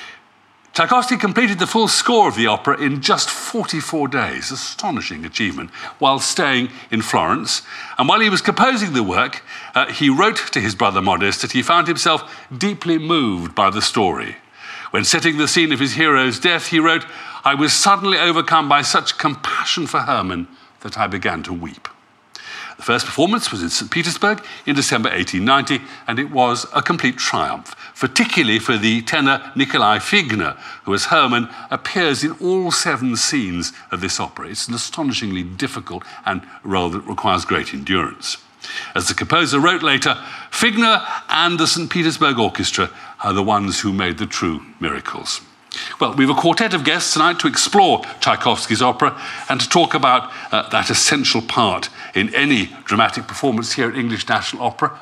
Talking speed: 170 wpm